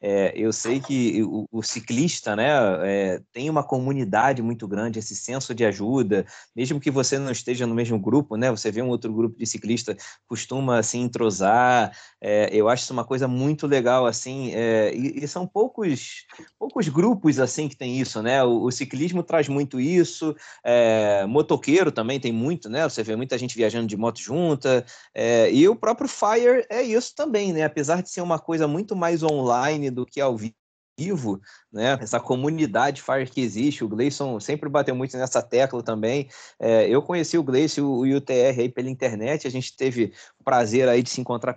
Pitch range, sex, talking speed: 115-150 Hz, male, 190 wpm